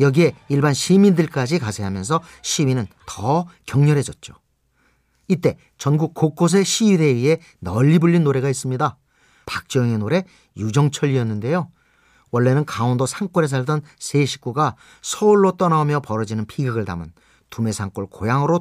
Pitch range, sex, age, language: 120-165 Hz, male, 40-59, Korean